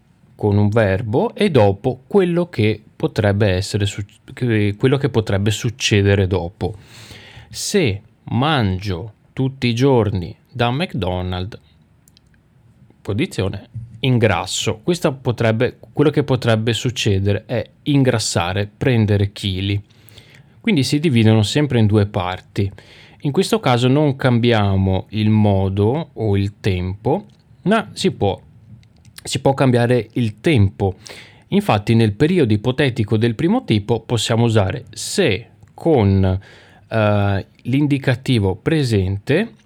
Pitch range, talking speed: 105-135 Hz, 105 wpm